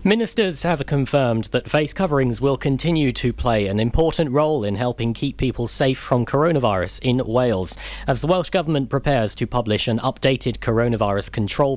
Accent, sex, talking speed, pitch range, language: British, male, 170 wpm, 110-140 Hz, English